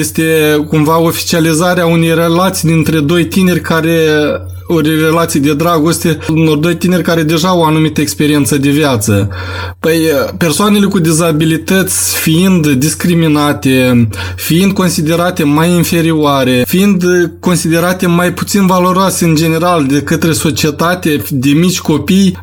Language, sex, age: Romanian, male, 20-39